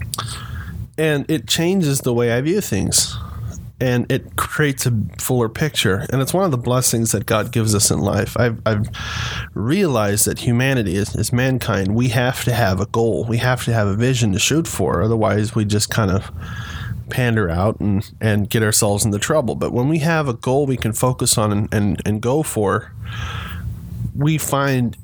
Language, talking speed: English, 190 wpm